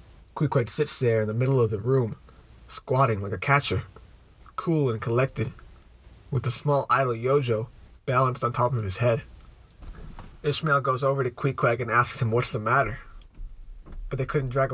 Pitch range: 110-135 Hz